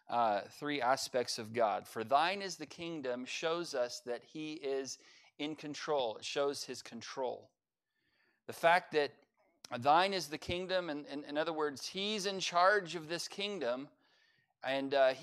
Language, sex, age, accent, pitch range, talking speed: English, male, 40-59, American, 125-165 Hz, 165 wpm